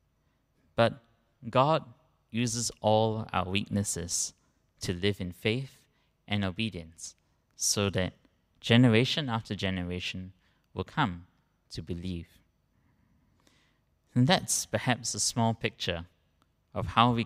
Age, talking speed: 20-39, 105 wpm